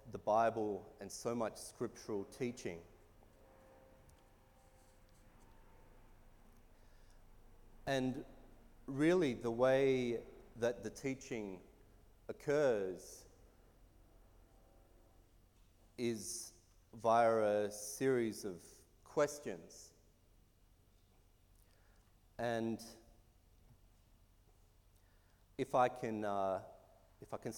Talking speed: 65 wpm